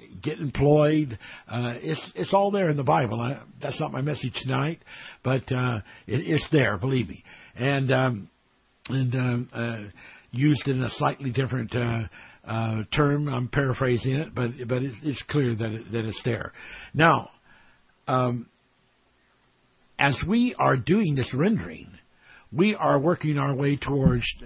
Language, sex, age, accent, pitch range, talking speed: English, male, 60-79, American, 120-150 Hz, 155 wpm